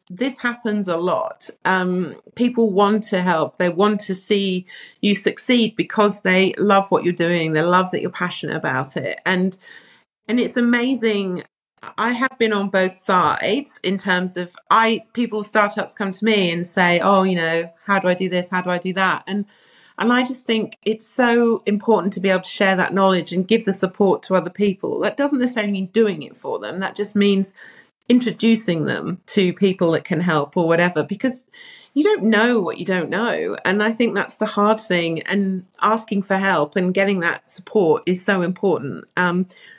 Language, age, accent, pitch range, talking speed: English, 40-59, British, 180-220 Hz, 200 wpm